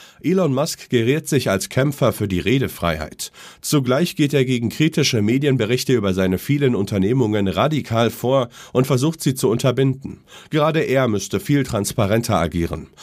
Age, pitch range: 40-59, 100-135 Hz